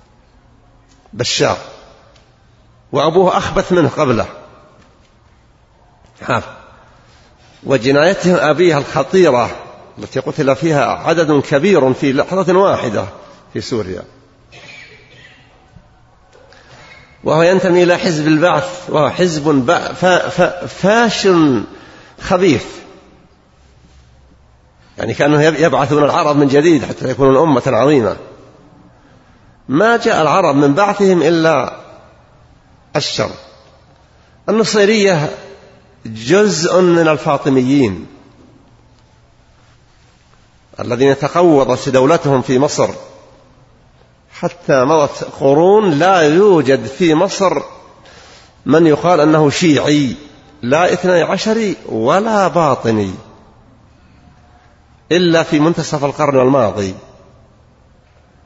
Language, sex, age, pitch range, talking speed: Arabic, male, 50-69, 130-175 Hz, 75 wpm